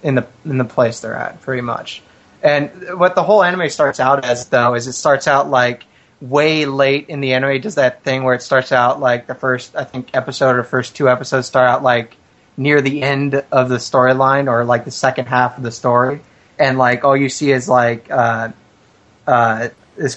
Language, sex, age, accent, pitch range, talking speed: English, male, 30-49, American, 120-135 Hz, 215 wpm